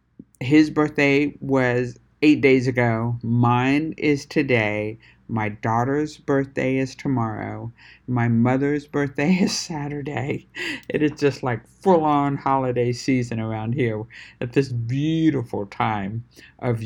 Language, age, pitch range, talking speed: English, 60-79, 110-135 Hz, 120 wpm